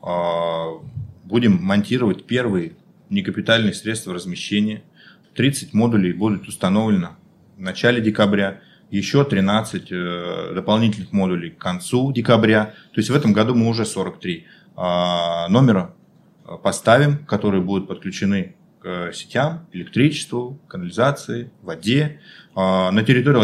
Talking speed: 100 wpm